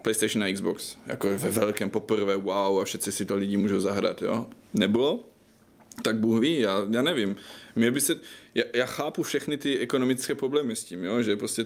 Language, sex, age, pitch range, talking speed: Czech, male, 20-39, 105-115 Hz, 195 wpm